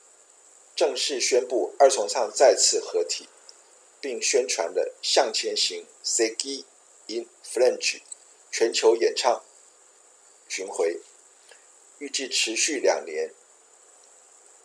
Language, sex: Chinese, male